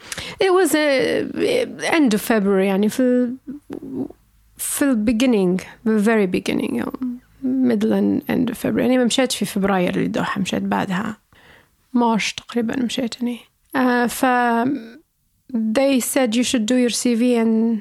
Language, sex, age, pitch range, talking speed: Arabic, female, 30-49, 225-265 Hz, 140 wpm